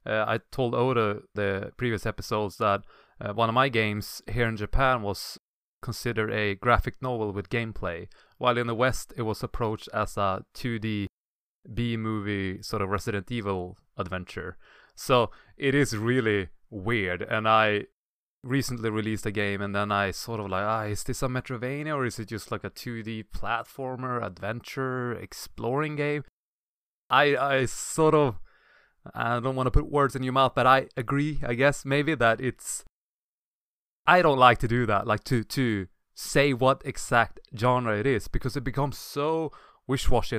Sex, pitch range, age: male, 105-130 Hz, 20-39